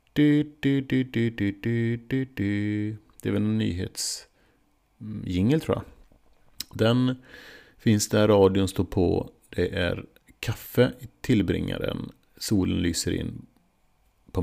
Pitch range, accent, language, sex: 90-120 Hz, Norwegian, Swedish, male